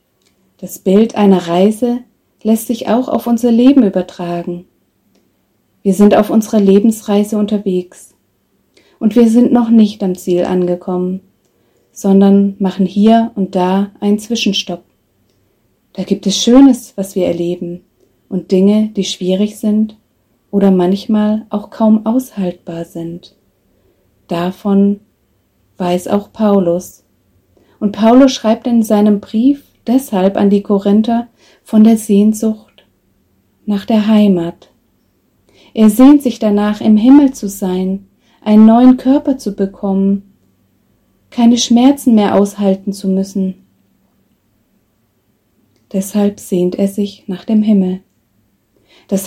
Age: 30-49